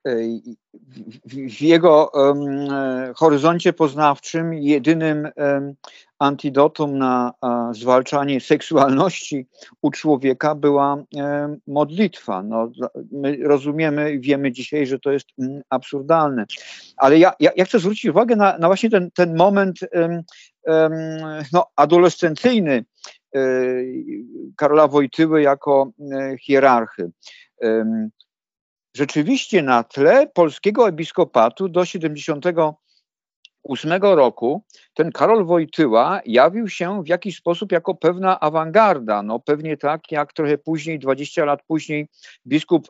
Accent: native